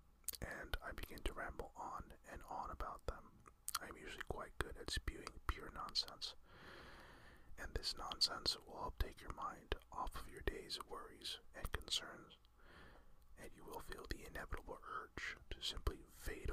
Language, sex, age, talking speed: English, male, 40-59, 165 wpm